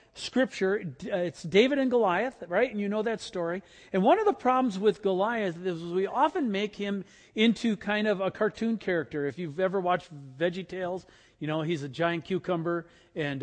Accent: American